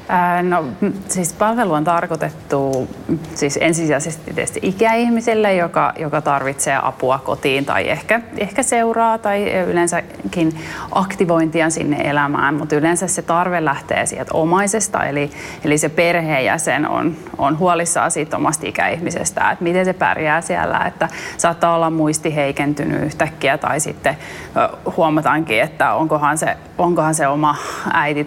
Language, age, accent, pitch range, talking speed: Finnish, 30-49, native, 155-180 Hz, 125 wpm